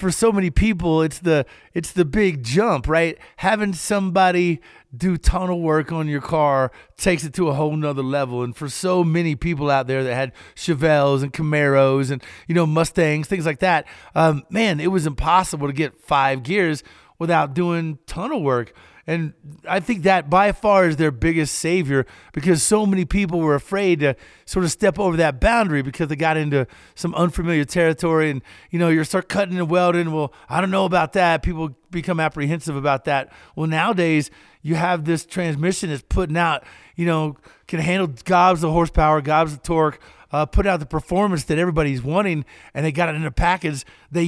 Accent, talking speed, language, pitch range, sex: American, 190 wpm, English, 150-180 Hz, male